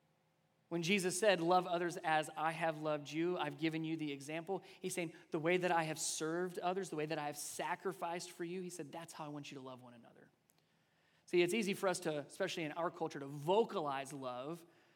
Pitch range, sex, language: 155-190 Hz, male, English